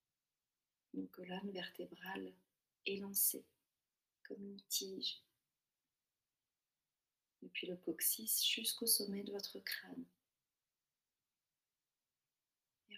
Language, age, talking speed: French, 40-59, 75 wpm